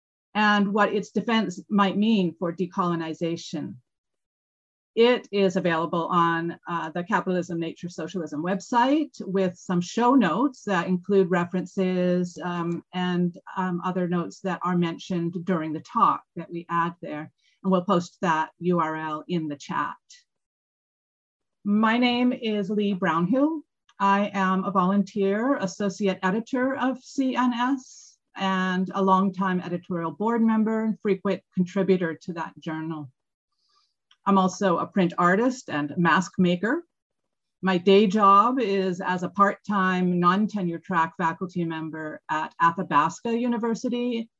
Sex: female